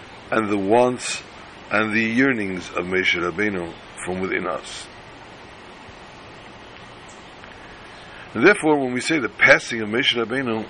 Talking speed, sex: 120 wpm, male